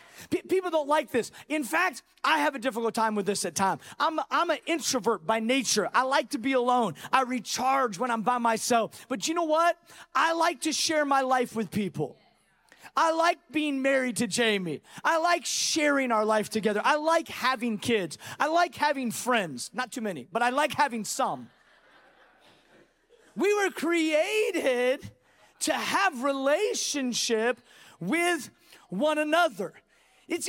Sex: male